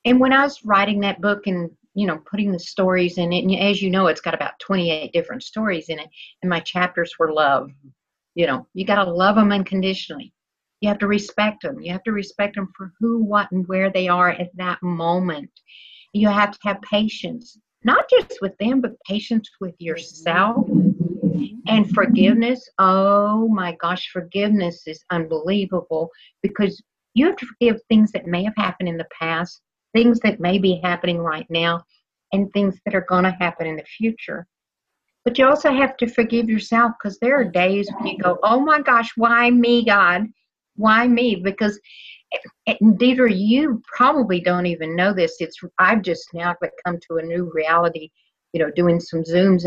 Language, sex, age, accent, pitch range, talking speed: English, female, 50-69, American, 175-225 Hz, 185 wpm